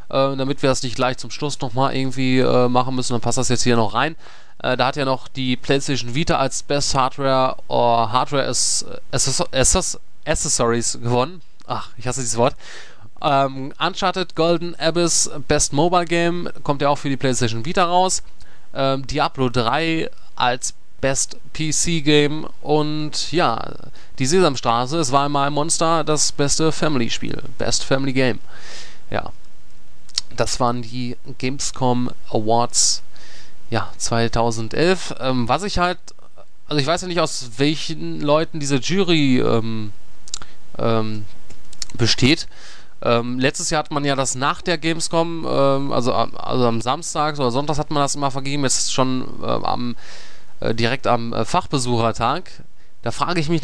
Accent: German